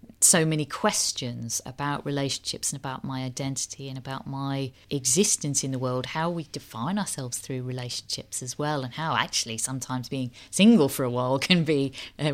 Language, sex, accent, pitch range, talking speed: English, female, British, 125-160 Hz, 175 wpm